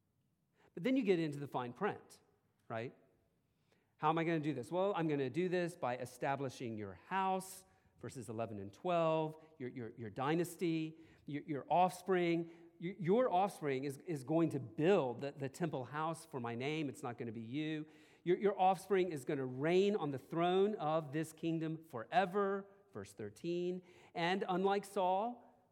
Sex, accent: male, American